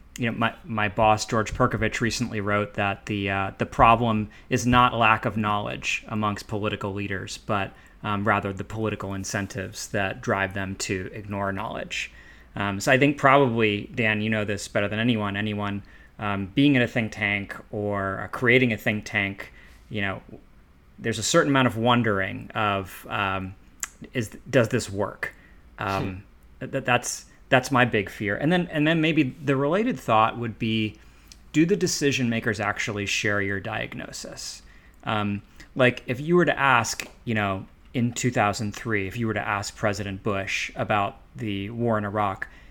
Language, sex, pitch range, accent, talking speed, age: English, male, 100-120 Hz, American, 170 wpm, 30-49